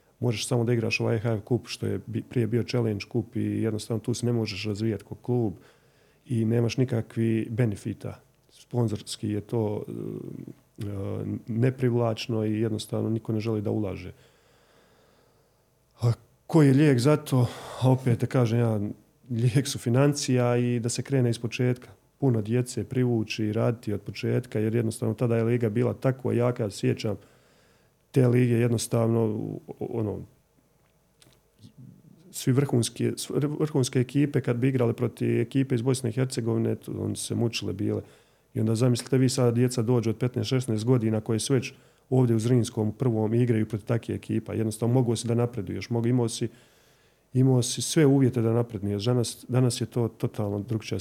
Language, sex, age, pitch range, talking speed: Croatian, male, 40-59, 110-125 Hz, 155 wpm